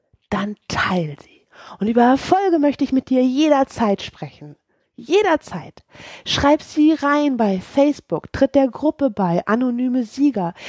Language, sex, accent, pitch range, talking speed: German, female, German, 210-295 Hz, 135 wpm